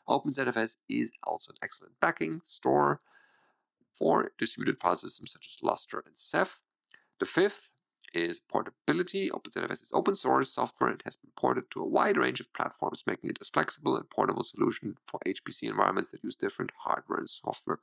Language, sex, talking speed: English, male, 170 wpm